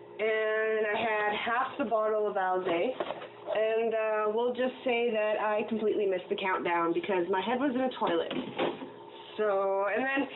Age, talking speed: 20-39, 170 wpm